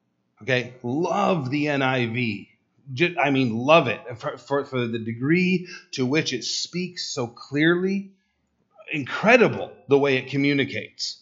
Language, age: English, 40-59